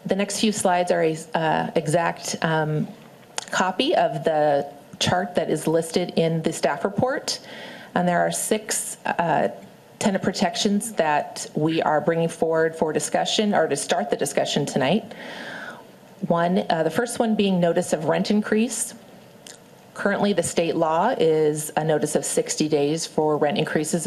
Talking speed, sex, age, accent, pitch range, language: 155 wpm, female, 40-59, American, 160-200 Hz, English